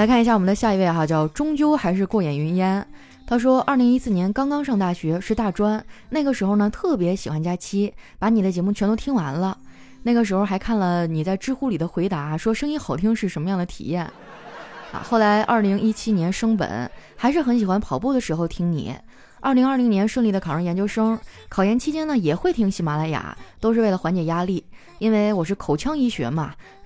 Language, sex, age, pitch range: Chinese, female, 20-39, 175-240 Hz